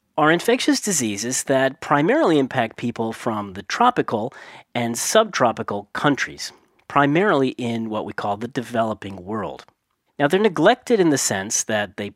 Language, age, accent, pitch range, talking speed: English, 40-59, American, 110-170 Hz, 145 wpm